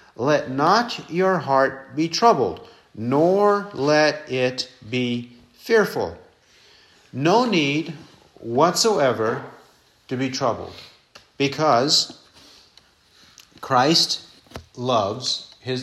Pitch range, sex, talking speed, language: 135-185 Hz, male, 80 wpm, English